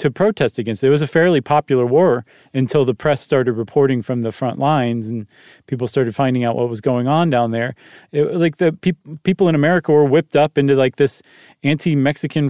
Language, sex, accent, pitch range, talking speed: English, male, American, 130-160 Hz, 200 wpm